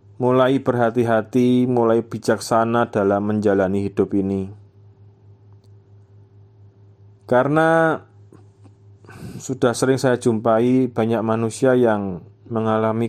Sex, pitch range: male, 100-120 Hz